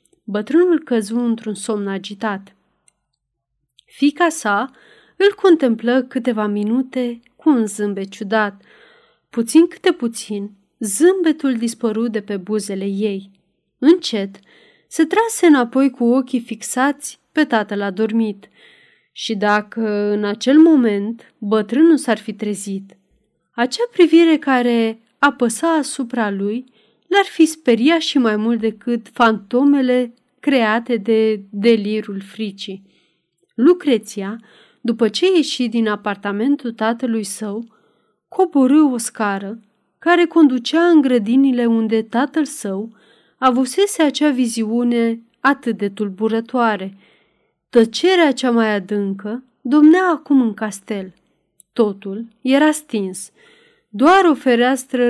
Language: Romanian